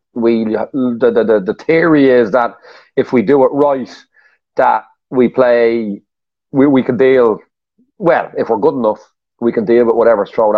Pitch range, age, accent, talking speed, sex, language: 105-125 Hz, 30-49, Irish, 170 wpm, male, English